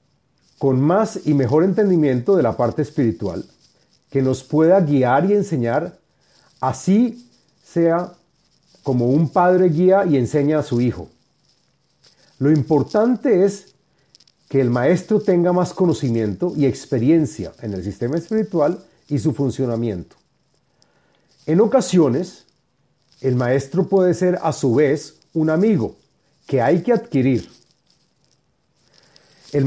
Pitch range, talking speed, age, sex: 125-180 Hz, 120 wpm, 40-59, male